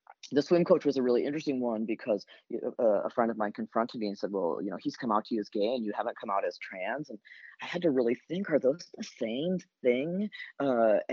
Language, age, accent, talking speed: English, 30-49, American, 255 wpm